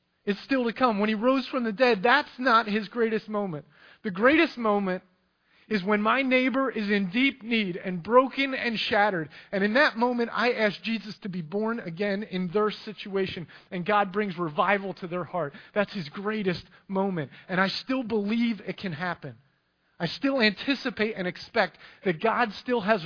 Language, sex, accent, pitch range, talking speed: English, male, American, 155-215 Hz, 185 wpm